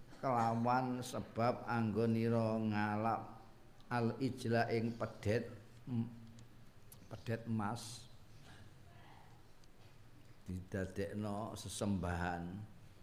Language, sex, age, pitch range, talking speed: Indonesian, male, 50-69, 110-130 Hz, 60 wpm